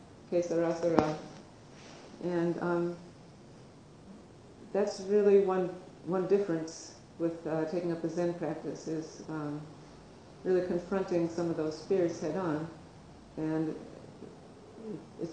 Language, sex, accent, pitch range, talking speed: English, female, American, 160-190 Hz, 100 wpm